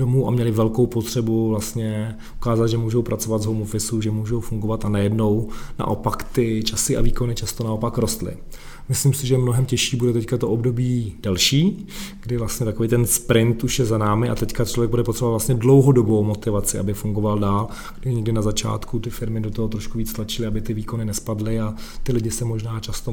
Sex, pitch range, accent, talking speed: male, 110-130 Hz, native, 195 wpm